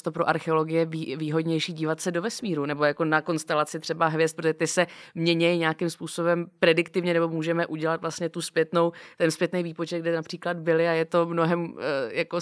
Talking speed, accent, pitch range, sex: 190 wpm, native, 165-185 Hz, female